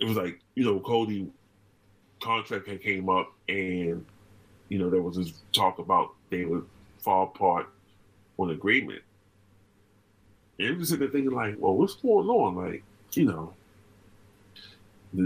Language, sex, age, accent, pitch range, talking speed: English, male, 30-49, American, 95-105 Hz, 150 wpm